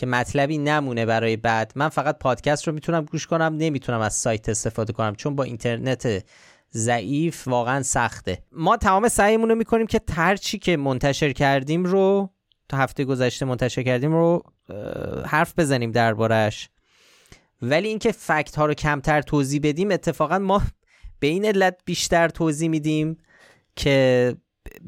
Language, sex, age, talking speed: Persian, male, 30-49, 145 wpm